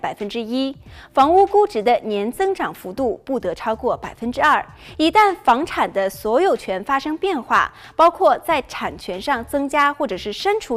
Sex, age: female, 20-39